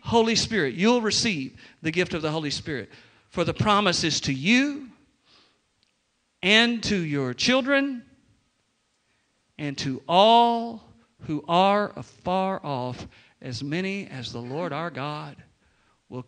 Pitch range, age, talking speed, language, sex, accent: 140-195 Hz, 50-69, 130 wpm, English, male, American